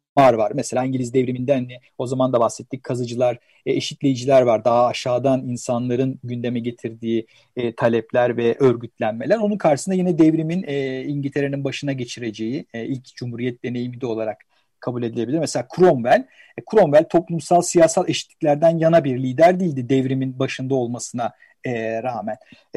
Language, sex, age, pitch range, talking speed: Turkish, male, 50-69, 125-180 Hz, 125 wpm